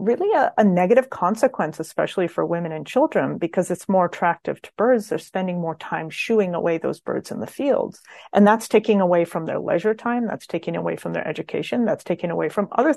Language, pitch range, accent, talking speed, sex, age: English, 170-215 Hz, American, 215 wpm, female, 40-59